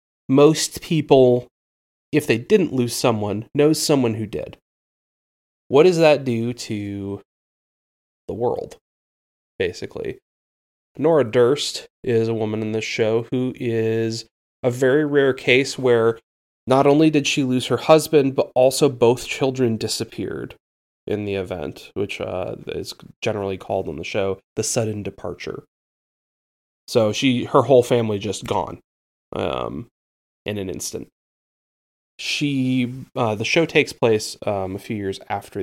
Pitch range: 100-125 Hz